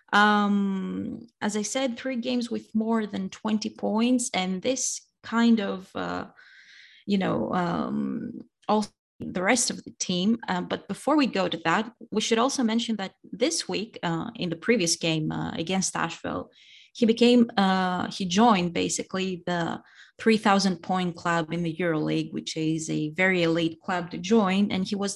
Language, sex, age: English, female, 20-39